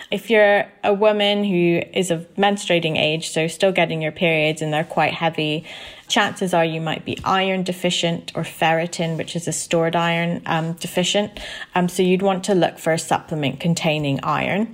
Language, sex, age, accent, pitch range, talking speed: English, female, 30-49, British, 150-180 Hz, 185 wpm